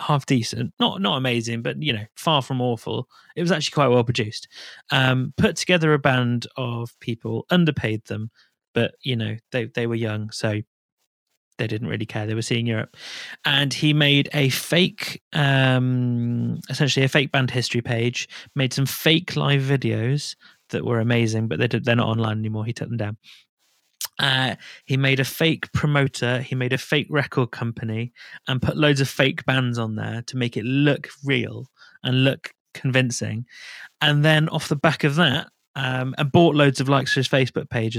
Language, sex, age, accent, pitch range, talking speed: English, male, 30-49, British, 120-155 Hz, 185 wpm